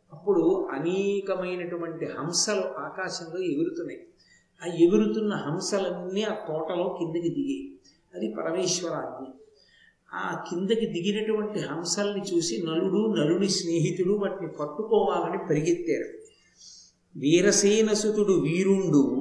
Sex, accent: male, native